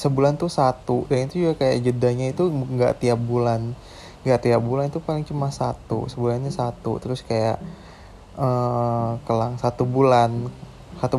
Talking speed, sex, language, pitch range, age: 155 wpm, male, Indonesian, 115-130 Hz, 20-39